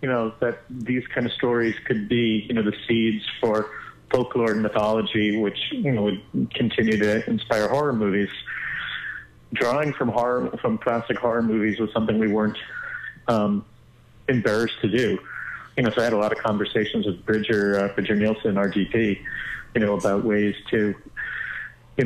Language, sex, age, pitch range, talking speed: English, male, 30-49, 105-120 Hz, 170 wpm